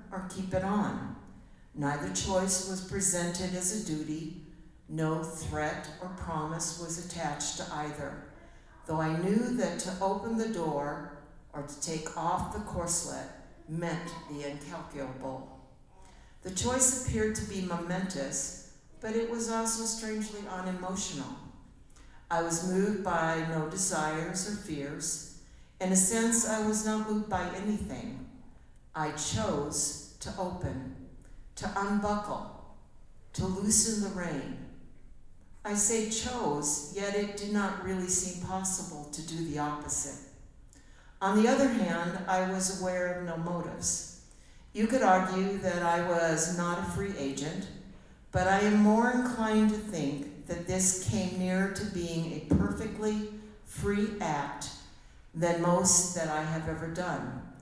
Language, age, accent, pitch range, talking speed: English, 60-79, American, 160-205 Hz, 140 wpm